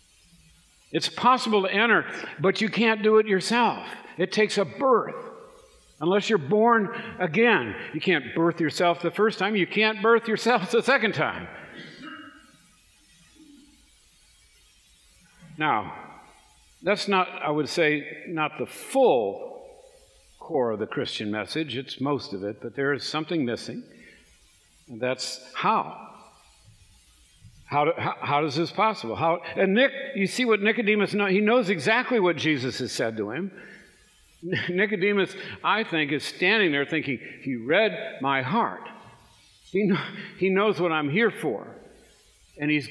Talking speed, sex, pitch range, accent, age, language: 145 wpm, male, 145-220 Hz, American, 60-79, English